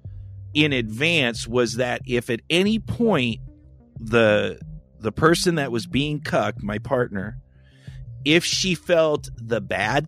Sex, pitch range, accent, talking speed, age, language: male, 105-135 Hz, American, 130 wpm, 40-59, English